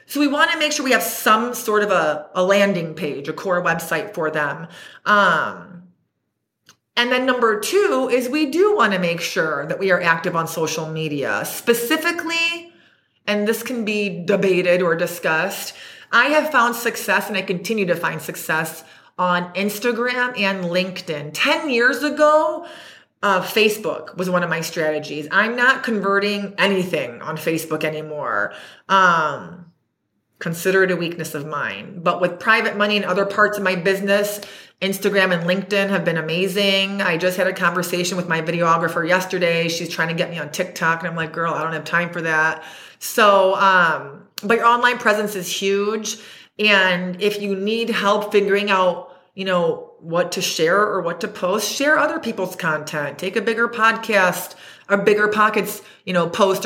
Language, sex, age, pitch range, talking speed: English, female, 30-49, 170-220 Hz, 175 wpm